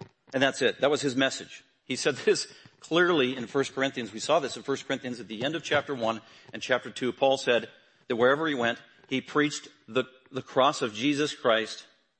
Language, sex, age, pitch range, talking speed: English, male, 40-59, 120-150 Hz, 210 wpm